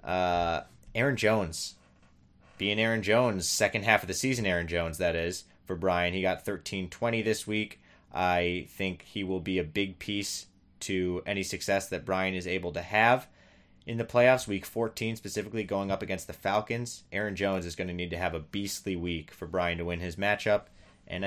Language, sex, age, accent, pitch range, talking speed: English, male, 20-39, American, 90-110 Hz, 190 wpm